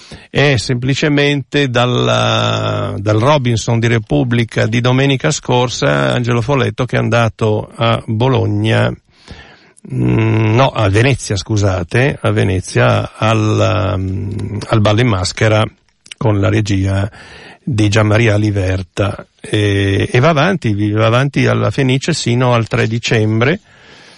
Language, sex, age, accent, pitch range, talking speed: Italian, male, 50-69, native, 110-135 Hz, 115 wpm